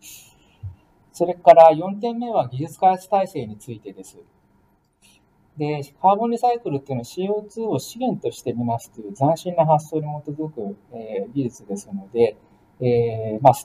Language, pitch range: Japanese, 125-180 Hz